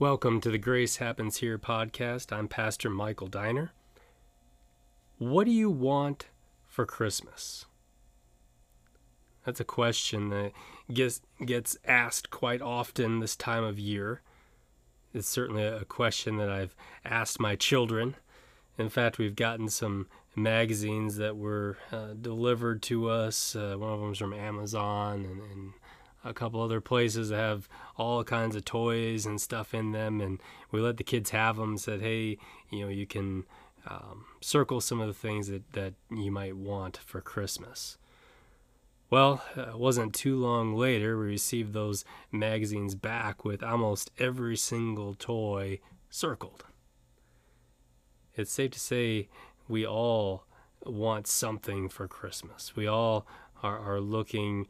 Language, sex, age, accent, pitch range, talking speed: English, male, 30-49, American, 105-120 Hz, 145 wpm